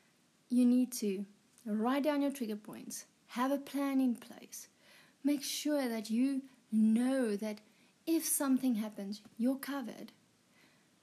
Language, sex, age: English, female, 30-49